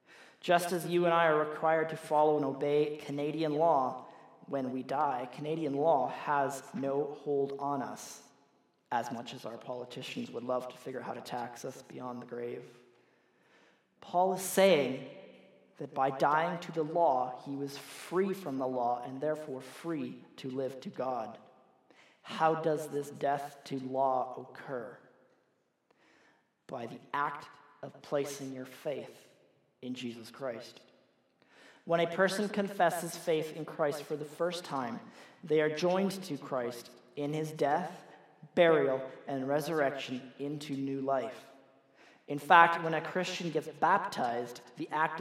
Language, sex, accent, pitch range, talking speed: English, male, American, 135-160 Hz, 150 wpm